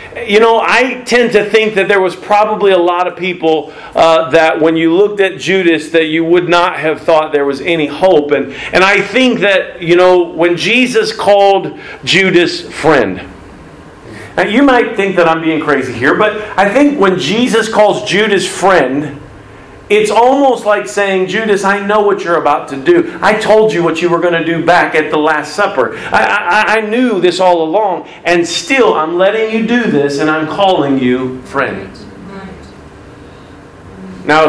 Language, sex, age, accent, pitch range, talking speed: English, male, 40-59, American, 160-205 Hz, 185 wpm